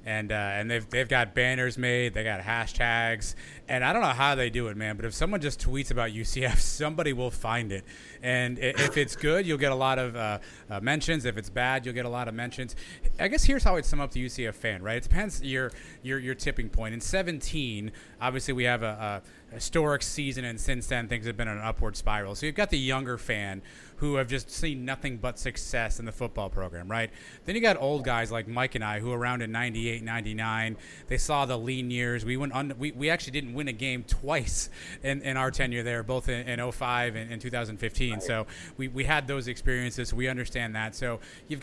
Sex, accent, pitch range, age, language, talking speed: male, American, 115-140 Hz, 30-49, English, 235 wpm